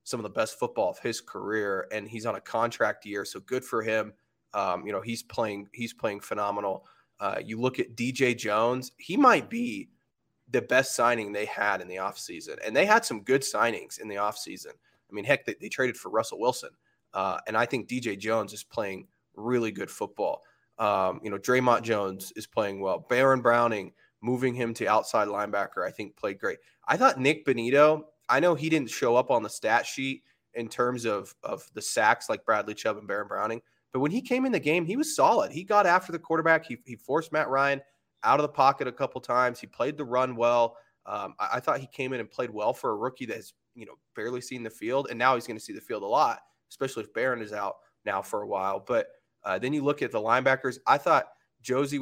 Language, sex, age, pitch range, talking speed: English, male, 20-39, 115-155 Hz, 235 wpm